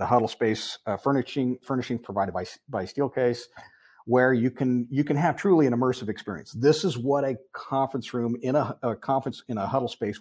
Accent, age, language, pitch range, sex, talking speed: American, 50-69, English, 110-130 Hz, male, 200 wpm